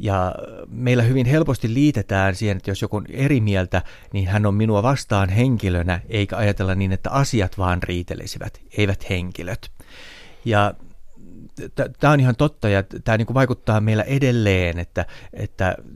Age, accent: 30-49, native